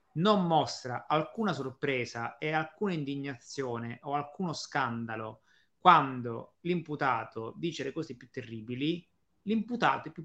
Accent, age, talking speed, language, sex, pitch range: native, 30-49, 115 wpm, Italian, male, 120-165 Hz